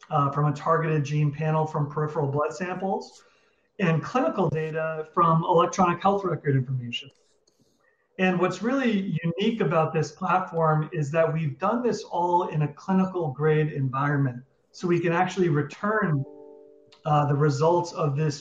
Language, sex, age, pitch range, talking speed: English, male, 40-59, 150-180 Hz, 150 wpm